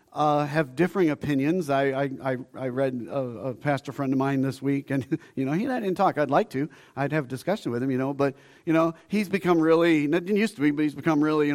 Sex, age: male, 40-59